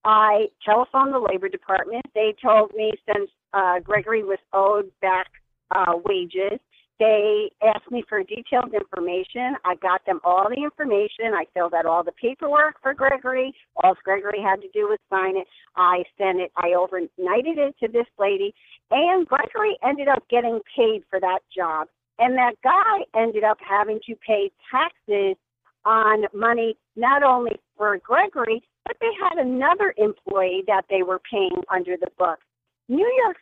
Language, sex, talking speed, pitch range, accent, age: English, female, 165 wpm, 185-255 Hz, American, 50-69